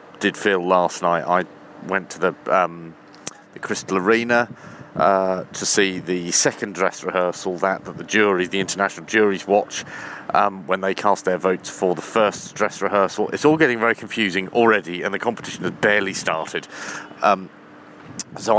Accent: British